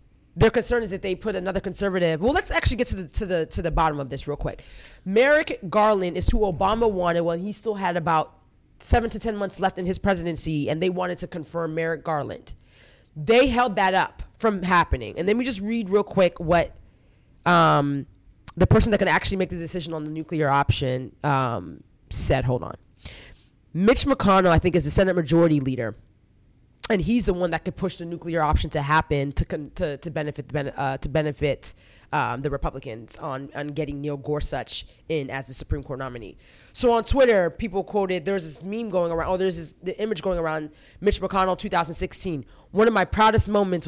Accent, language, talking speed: American, English, 205 wpm